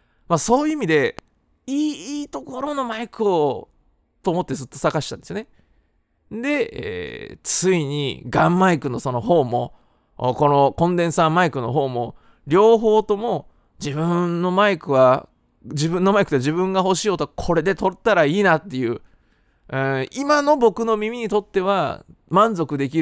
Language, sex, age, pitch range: Japanese, male, 20-39, 130-195 Hz